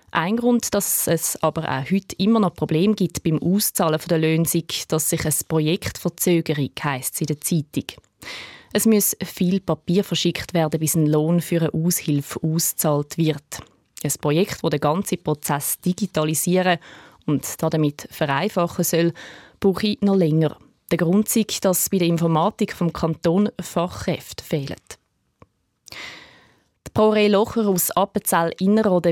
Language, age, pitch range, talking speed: German, 20-39, 155-190 Hz, 140 wpm